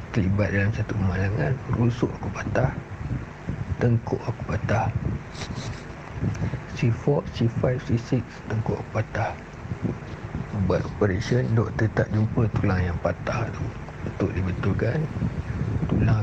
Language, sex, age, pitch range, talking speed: Malay, male, 50-69, 100-120 Hz, 100 wpm